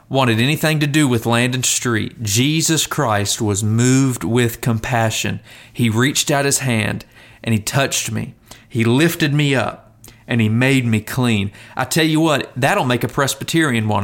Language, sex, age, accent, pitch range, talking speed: English, male, 40-59, American, 110-135 Hz, 175 wpm